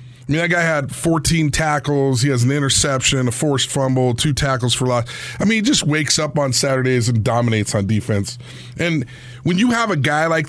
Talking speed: 210 wpm